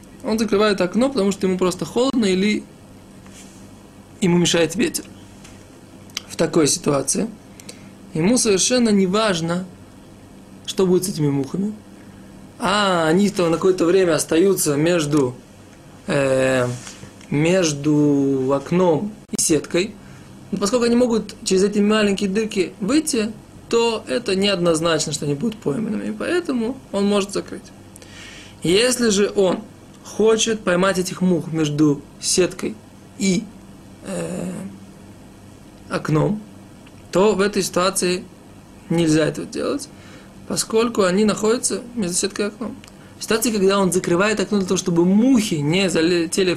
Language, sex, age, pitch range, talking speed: Russian, male, 20-39, 165-215 Hz, 120 wpm